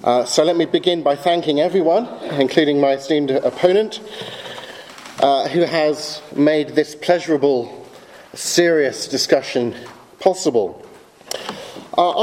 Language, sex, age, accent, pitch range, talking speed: English, male, 40-59, British, 150-250 Hz, 110 wpm